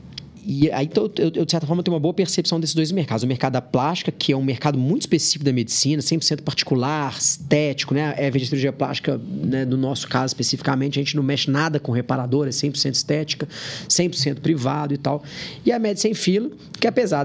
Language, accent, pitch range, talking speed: Portuguese, Brazilian, 130-165 Hz, 210 wpm